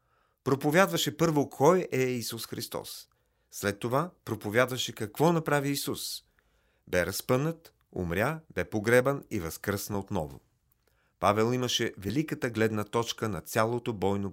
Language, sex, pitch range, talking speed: Bulgarian, male, 105-135 Hz, 115 wpm